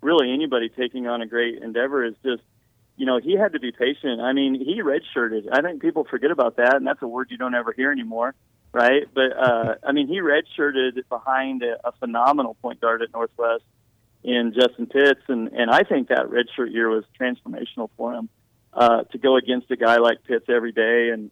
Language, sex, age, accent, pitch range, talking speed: English, male, 40-59, American, 115-130 Hz, 210 wpm